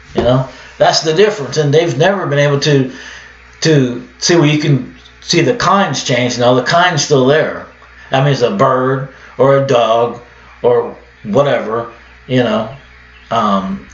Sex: male